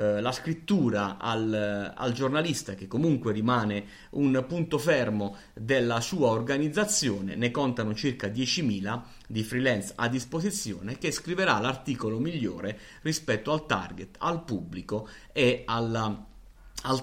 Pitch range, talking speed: 105-150 Hz, 120 wpm